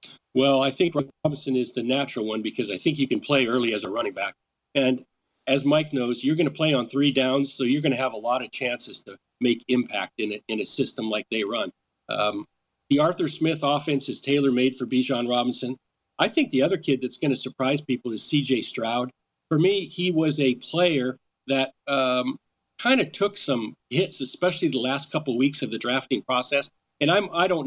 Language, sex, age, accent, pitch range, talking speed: English, male, 50-69, American, 130-165 Hz, 215 wpm